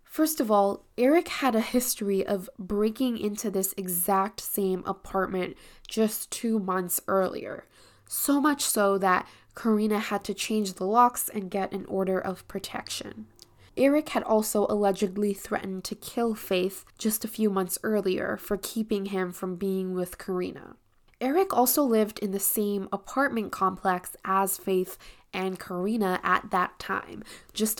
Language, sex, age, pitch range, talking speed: English, female, 10-29, 190-225 Hz, 150 wpm